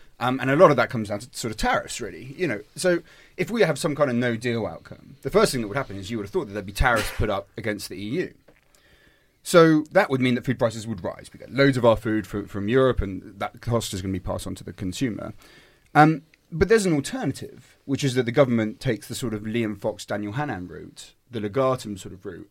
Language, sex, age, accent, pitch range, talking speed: English, male, 30-49, British, 100-135 Hz, 260 wpm